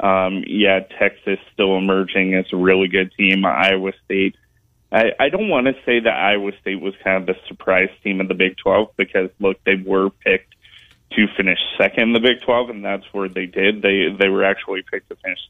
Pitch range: 95-105 Hz